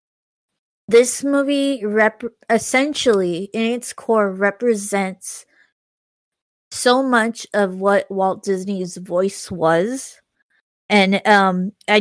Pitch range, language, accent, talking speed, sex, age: 190-215 Hz, English, American, 95 wpm, female, 20-39